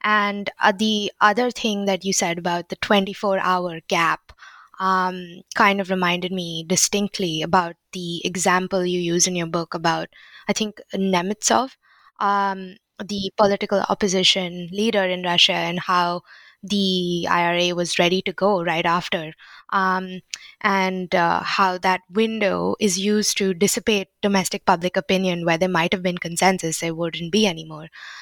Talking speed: 150 wpm